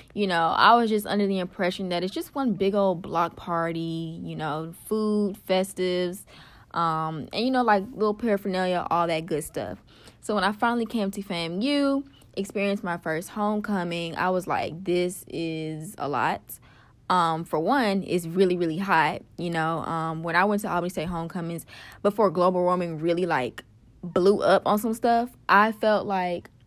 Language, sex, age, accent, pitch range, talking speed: English, female, 20-39, American, 165-205 Hz, 180 wpm